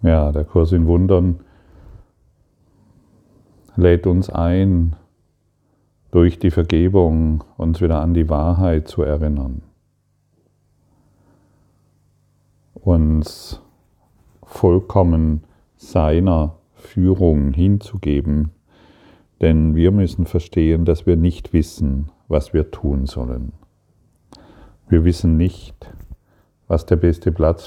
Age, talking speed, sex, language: 40-59, 90 wpm, male, German